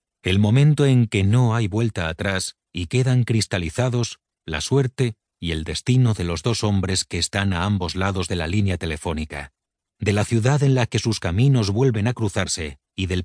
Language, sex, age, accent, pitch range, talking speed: Spanish, male, 40-59, Spanish, 85-115 Hz, 190 wpm